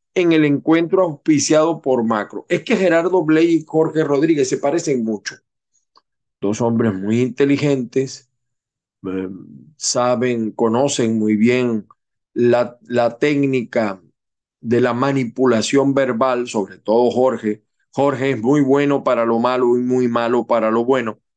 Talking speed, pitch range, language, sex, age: 135 wpm, 120-155 Hz, Spanish, male, 40-59